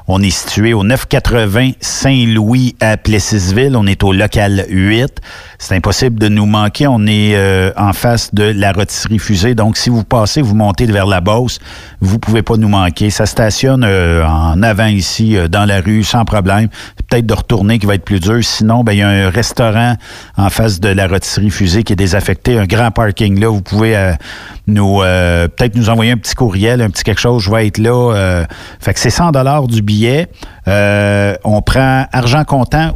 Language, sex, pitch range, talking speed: French, male, 100-125 Hz, 205 wpm